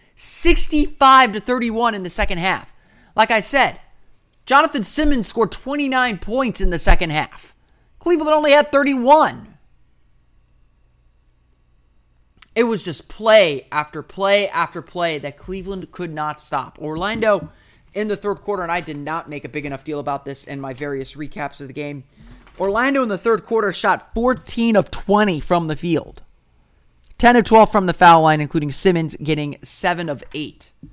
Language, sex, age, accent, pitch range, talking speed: English, male, 30-49, American, 150-200 Hz, 165 wpm